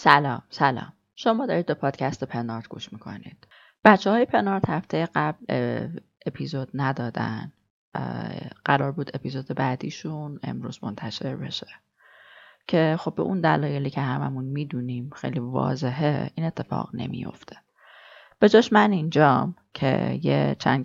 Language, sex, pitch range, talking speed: Persian, female, 125-175 Hz, 120 wpm